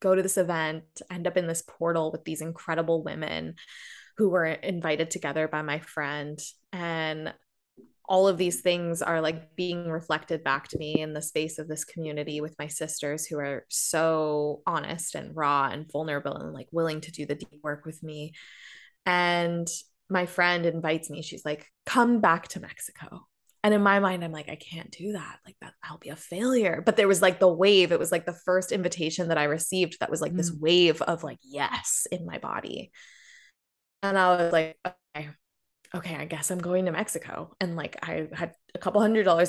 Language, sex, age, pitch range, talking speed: English, female, 20-39, 160-190 Hz, 200 wpm